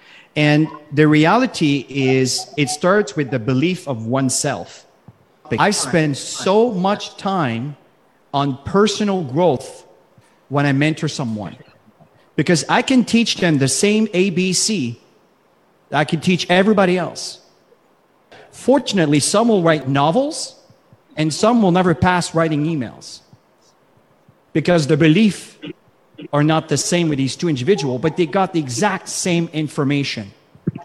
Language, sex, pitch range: English, male, 145-195 Hz